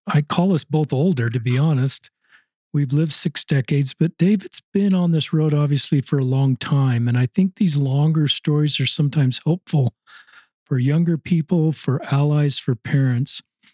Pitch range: 135-155 Hz